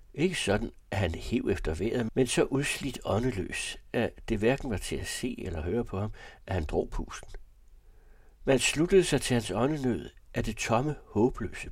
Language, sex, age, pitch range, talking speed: Danish, male, 60-79, 90-115 Hz, 185 wpm